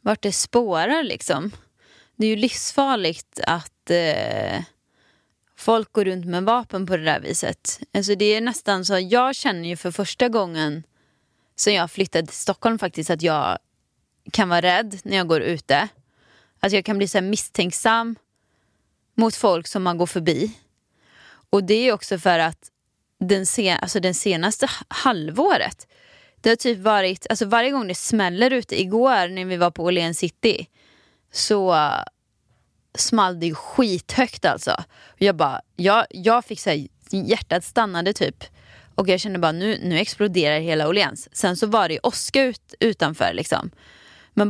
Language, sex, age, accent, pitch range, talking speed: Swedish, female, 20-39, native, 175-225 Hz, 165 wpm